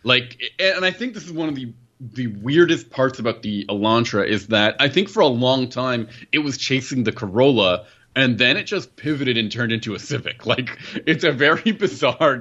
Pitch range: 100-130 Hz